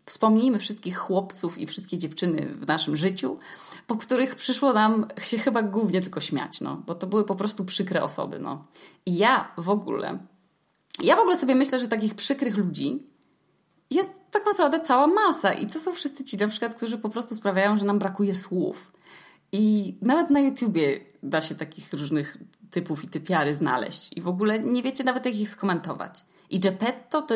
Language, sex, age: Polish, female, 20-39